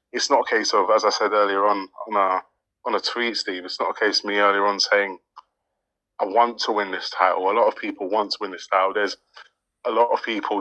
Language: English